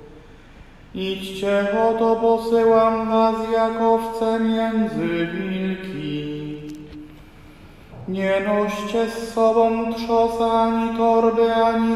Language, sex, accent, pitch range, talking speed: Polish, male, native, 190-230 Hz, 80 wpm